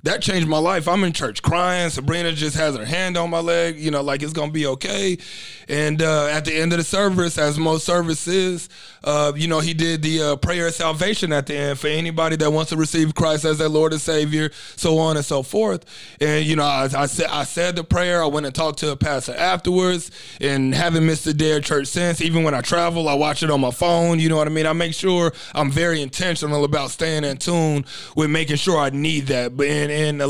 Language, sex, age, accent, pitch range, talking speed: English, male, 30-49, American, 150-175 Hz, 245 wpm